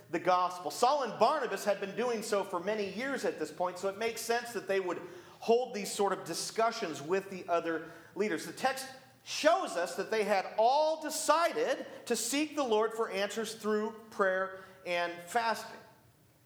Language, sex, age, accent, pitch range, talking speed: English, male, 40-59, American, 175-230 Hz, 180 wpm